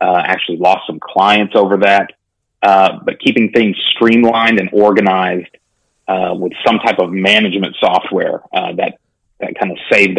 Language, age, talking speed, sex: English, 30-49, 160 wpm, male